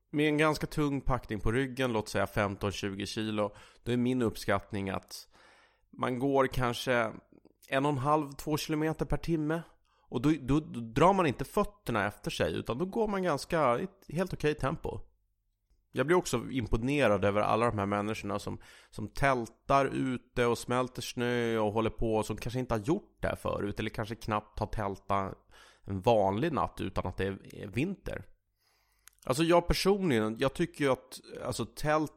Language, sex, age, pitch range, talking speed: English, male, 30-49, 105-145 Hz, 175 wpm